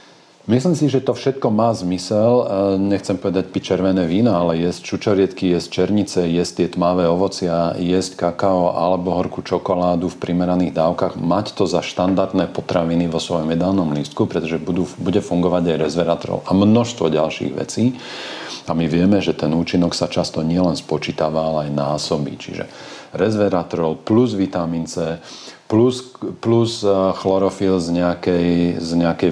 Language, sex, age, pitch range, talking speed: Slovak, male, 40-59, 85-95 Hz, 145 wpm